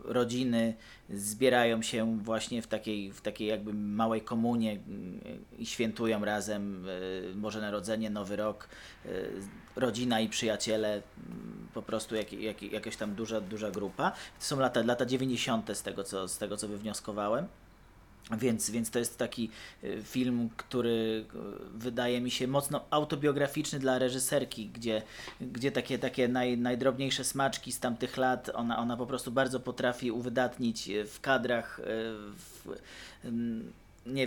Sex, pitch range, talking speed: male, 110-130 Hz, 130 wpm